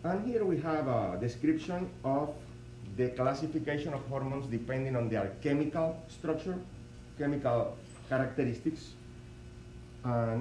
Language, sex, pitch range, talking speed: English, male, 110-140 Hz, 110 wpm